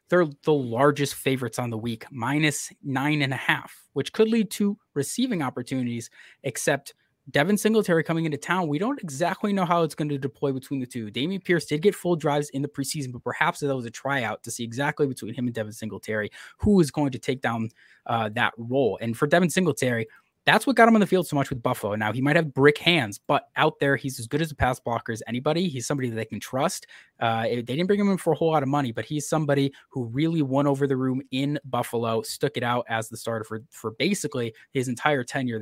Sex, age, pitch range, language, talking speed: male, 20-39, 120-155 Hz, English, 240 wpm